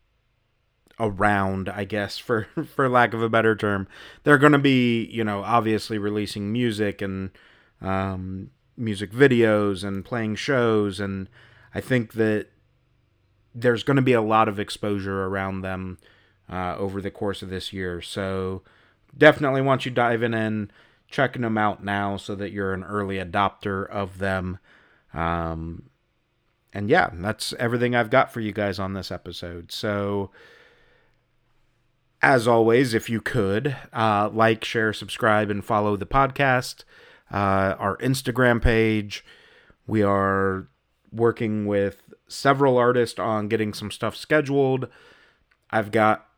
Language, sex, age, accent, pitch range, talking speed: English, male, 30-49, American, 100-120 Hz, 140 wpm